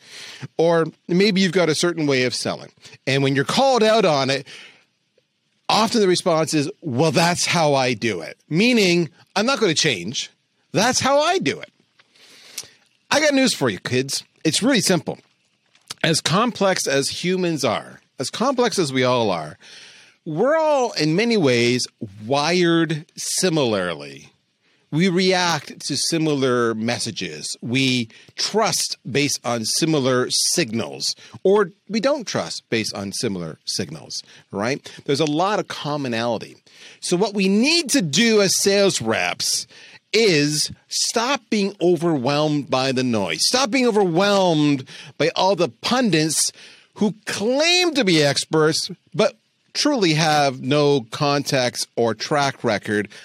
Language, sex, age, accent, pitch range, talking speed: English, male, 40-59, American, 130-195 Hz, 140 wpm